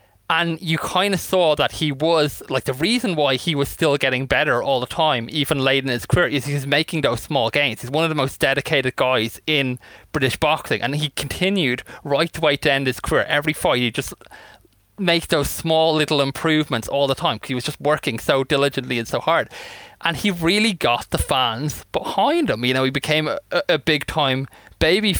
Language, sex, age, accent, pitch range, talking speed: English, male, 20-39, British, 125-160 Hz, 215 wpm